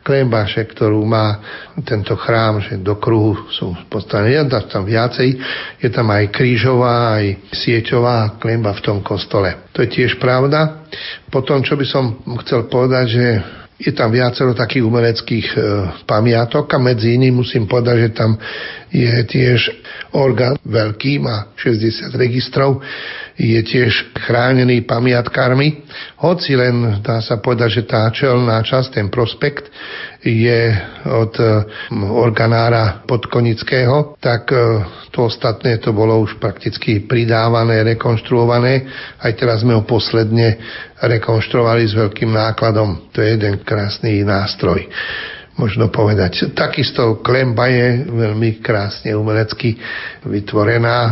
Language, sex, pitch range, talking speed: Slovak, male, 110-125 Hz, 125 wpm